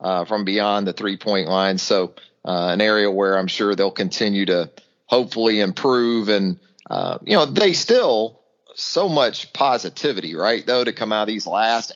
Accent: American